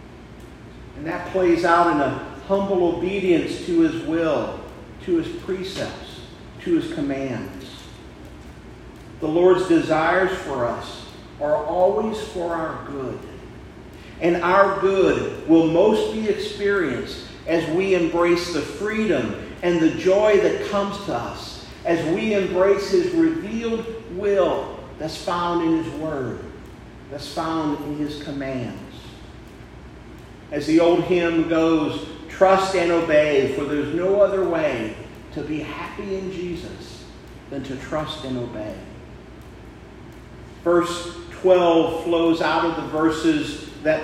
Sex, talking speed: male, 125 wpm